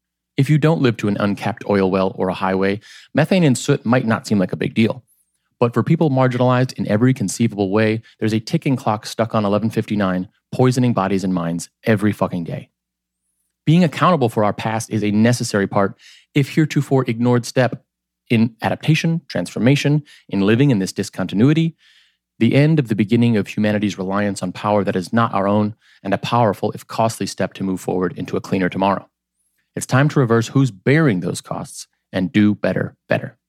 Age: 30-49